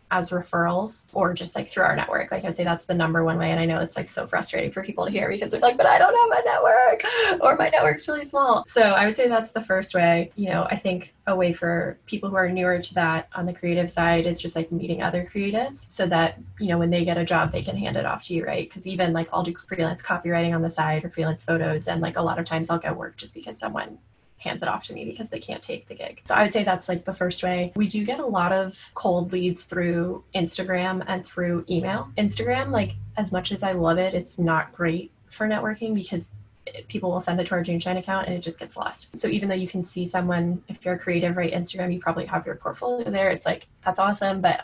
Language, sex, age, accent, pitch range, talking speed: English, female, 10-29, American, 170-190 Hz, 265 wpm